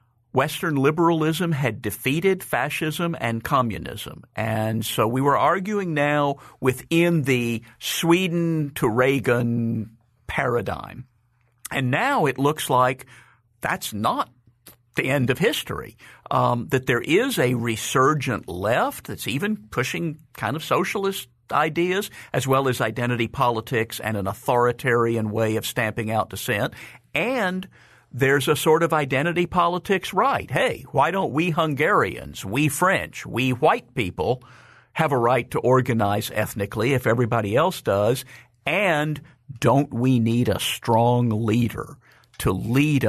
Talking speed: 130 wpm